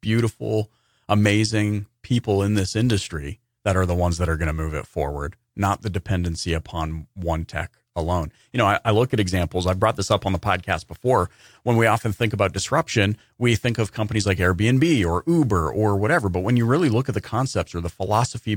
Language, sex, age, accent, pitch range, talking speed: English, male, 40-59, American, 90-120 Hz, 215 wpm